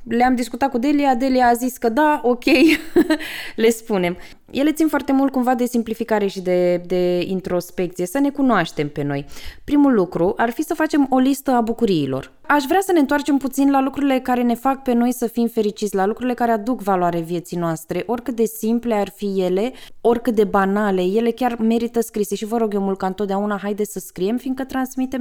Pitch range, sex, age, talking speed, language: 200-255 Hz, female, 20-39, 205 wpm, Romanian